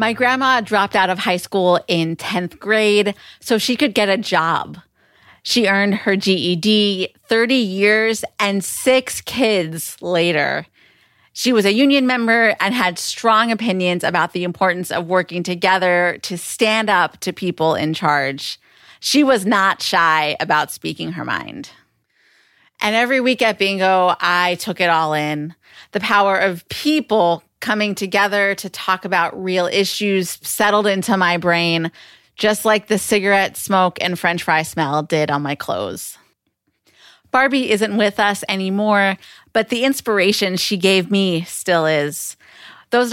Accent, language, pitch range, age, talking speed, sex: American, English, 175-220 Hz, 30-49, 150 wpm, female